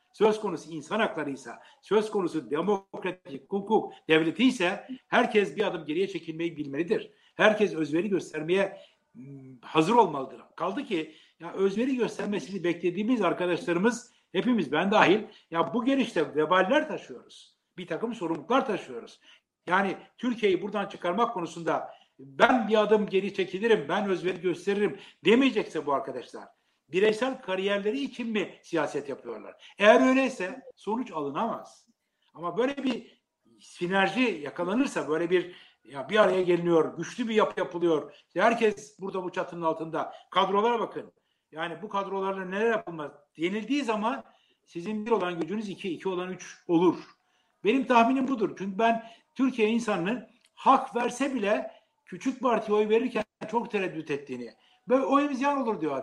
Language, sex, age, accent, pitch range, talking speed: Turkish, male, 60-79, native, 175-235 Hz, 135 wpm